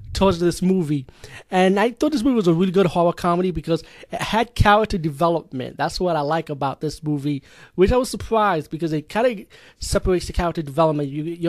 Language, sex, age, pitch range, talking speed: English, male, 30-49, 145-175 Hz, 210 wpm